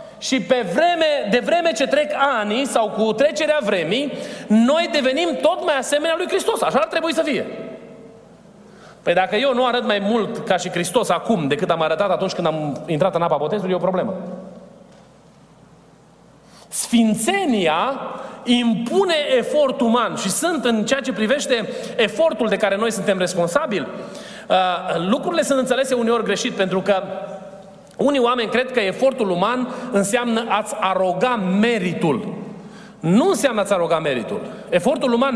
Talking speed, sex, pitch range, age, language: 150 wpm, male, 205-290 Hz, 30-49, Romanian